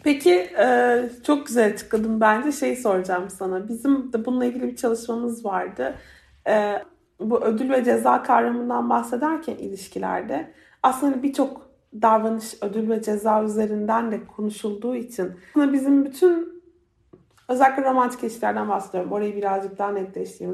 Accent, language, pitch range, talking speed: native, Turkish, 225-290 Hz, 125 wpm